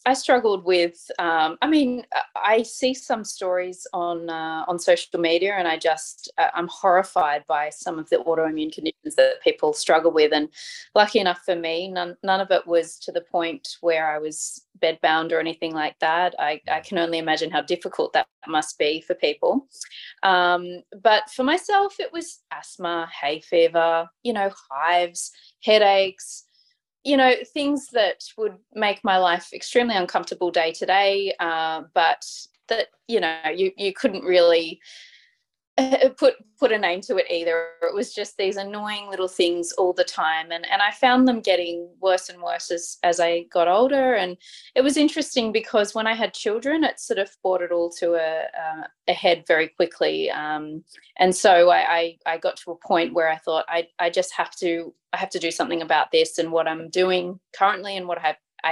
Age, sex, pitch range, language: 20-39, female, 165-220 Hz, English